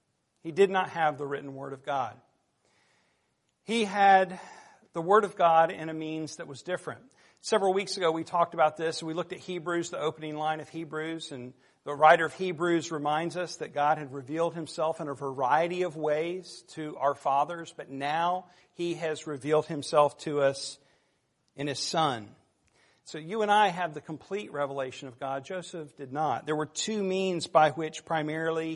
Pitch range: 145-170 Hz